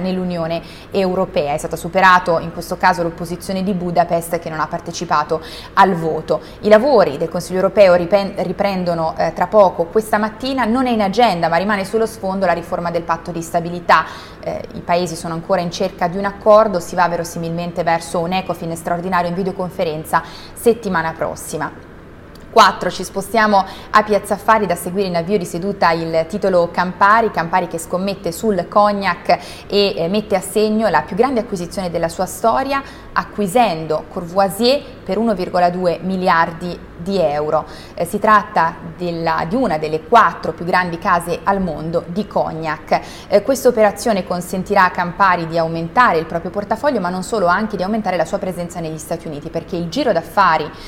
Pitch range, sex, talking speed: 170-205 Hz, female, 170 wpm